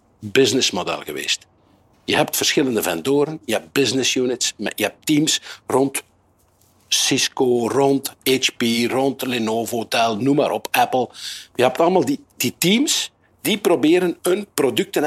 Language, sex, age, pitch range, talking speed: Dutch, male, 60-79, 120-185 Hz, 140 wpm